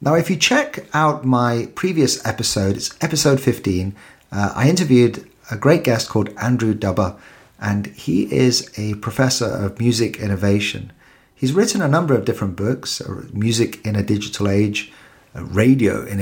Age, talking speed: 40-59, 160 wpm